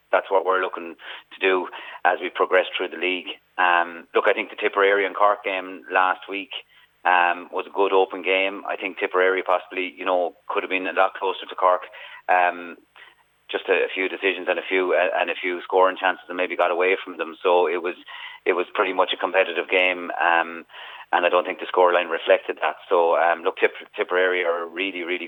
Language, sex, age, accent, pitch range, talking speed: English, male, 30-49, Irish, 90-100 Hz, 215 wpm